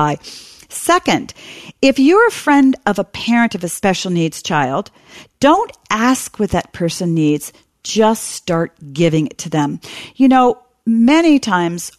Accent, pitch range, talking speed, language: American, 165-220 Hz, 145 wpm, English